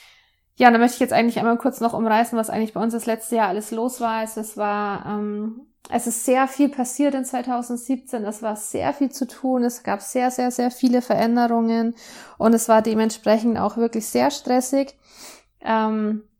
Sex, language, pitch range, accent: female, German, 220-245 Hz, German